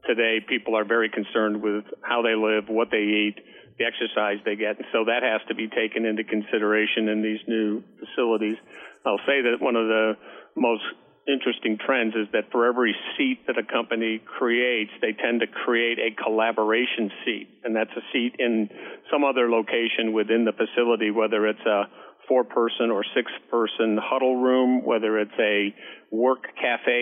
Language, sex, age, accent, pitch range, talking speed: English, male, 50-69, American, 110-120 Hz, 175 wpm